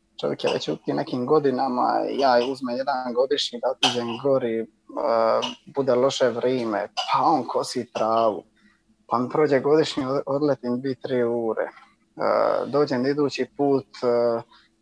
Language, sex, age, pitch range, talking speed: Croatian, male, 20-39, 120-145 Hz, 140 wpm